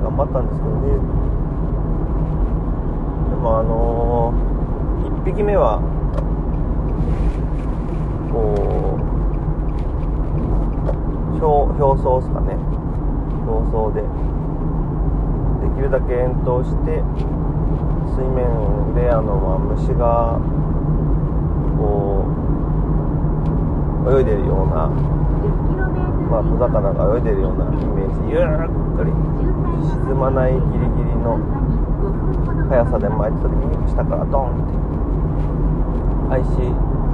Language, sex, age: Japanese, male, 30-49